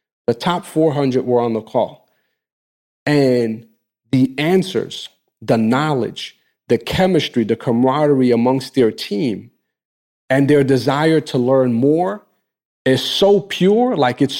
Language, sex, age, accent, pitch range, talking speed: English, male, 40-59, American, 125-155 Hz, 125 wpm